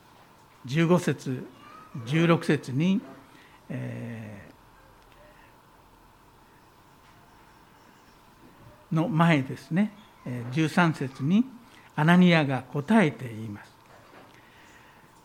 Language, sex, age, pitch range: Japanese, male, 60-79, 130-190 Hz